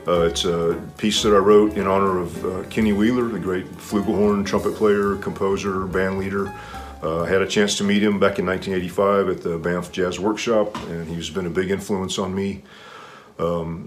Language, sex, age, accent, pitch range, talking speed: English, male, 40-59, American, 90-125 Hz, 200 wpm